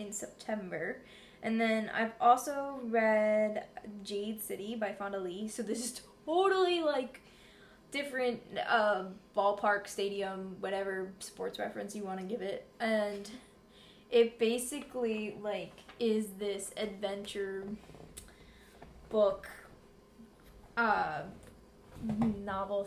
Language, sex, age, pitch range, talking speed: English, female, 10-29, 200-235 Hz, 100 wpm